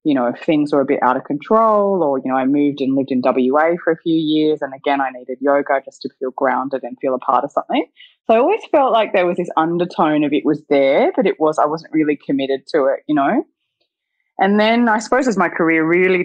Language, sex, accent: English, female, Australian